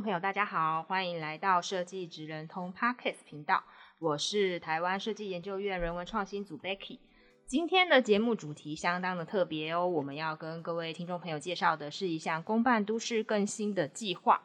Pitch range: 170-220 Hz